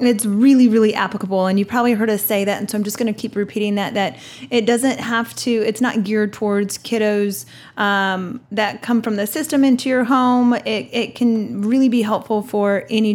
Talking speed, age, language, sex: 215 wpm, 20-39, English, female